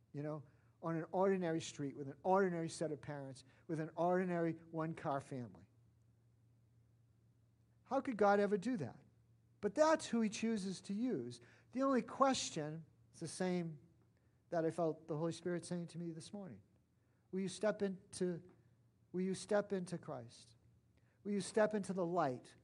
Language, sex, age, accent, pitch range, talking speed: English, male, 50-69, American, 120-195 Hz, 165 wpm